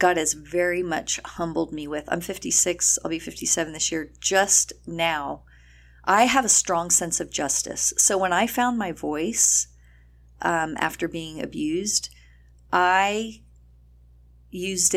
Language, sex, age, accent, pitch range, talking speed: English, female, 40-59, American, 160-210 Hz, 140 wpm